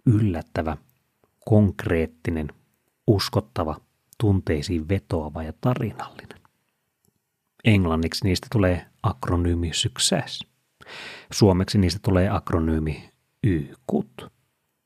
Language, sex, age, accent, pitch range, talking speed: Finnish, male, 30-49, native, 90-130 Hz, 60 wpm